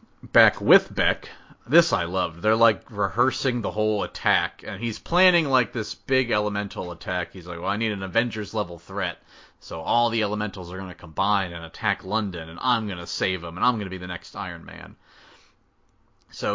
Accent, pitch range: American, 95-110 Hz